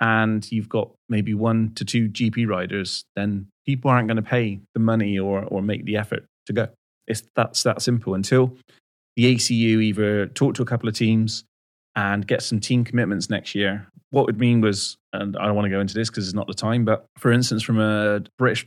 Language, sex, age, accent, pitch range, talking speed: English, male, 30-49, British, 100-120 Hz, 215 wpm